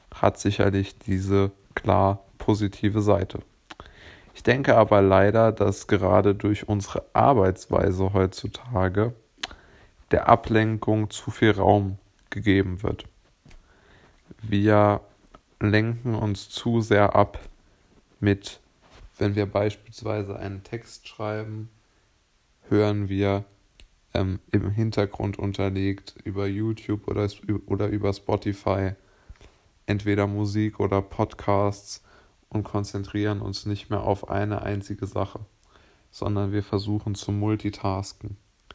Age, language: 20-39, German